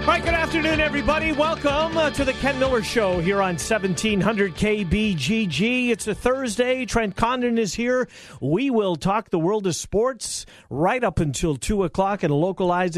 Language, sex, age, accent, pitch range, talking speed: English, male, 50-69, American, 145-200 Hz, 160 wpm